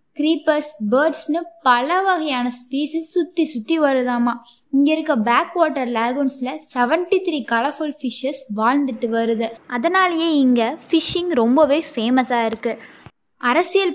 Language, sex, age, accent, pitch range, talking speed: Tamil, female, 20-39, native, 235-310 Hz, 70 wpm